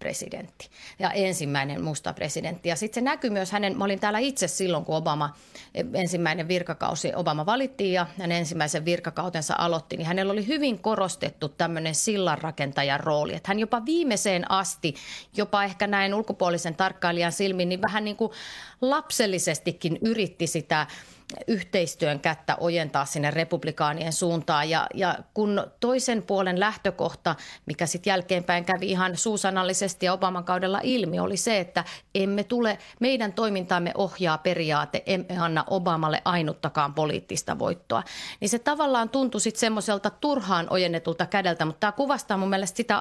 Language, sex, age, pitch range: Finnish, female, 30-49, 165-210 Hz